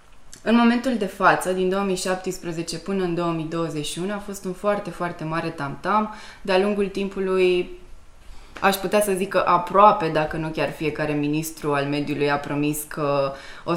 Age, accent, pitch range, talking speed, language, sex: 20-39, native, 155-200 Hz, 155 wpm, Romanian, female